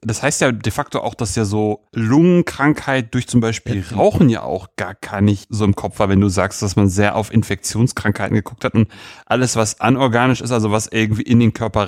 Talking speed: 220 wpm